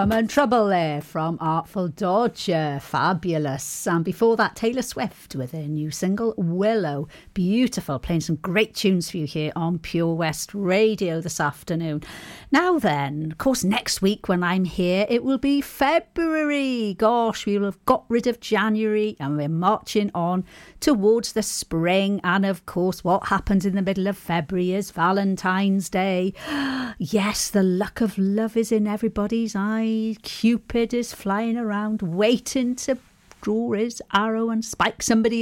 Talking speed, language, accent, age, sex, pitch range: 160 wpm, English, British, 40-59, female, 180-230 Hz